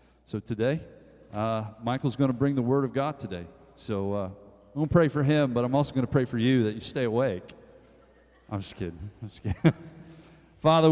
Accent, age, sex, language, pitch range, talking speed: American, 40-59, male, English, 85-120 Hz, 215 wpm